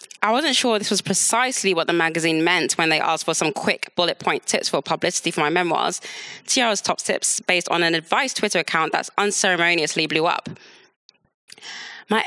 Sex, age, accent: female, 20-39, British